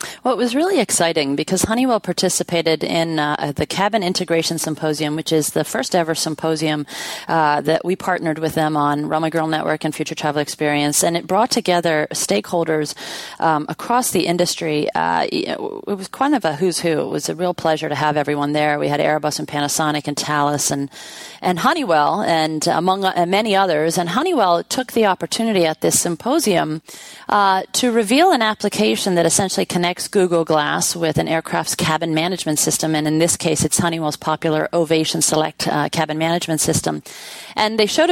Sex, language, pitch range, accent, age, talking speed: female, English, 155-200 Hz, American, 30-49, 180 wpm